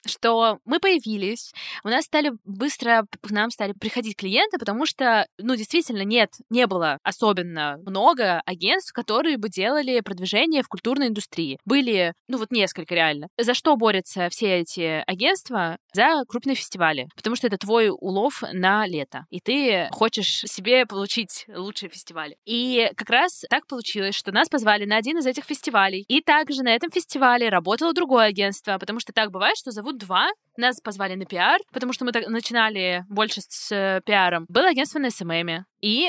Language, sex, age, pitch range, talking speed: Russian, female, 20-39, 195-260 Hz, 170 wpm